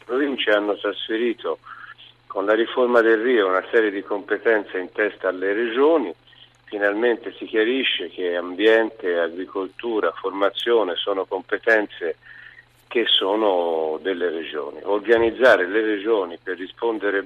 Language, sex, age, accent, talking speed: Italian, male, 50-69, native, 120 wpm